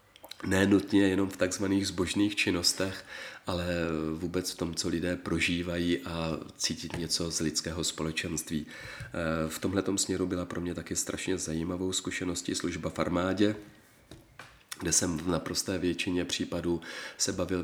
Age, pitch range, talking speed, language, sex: 40-59, 85-95 Hz, 135 wpm, Czech, male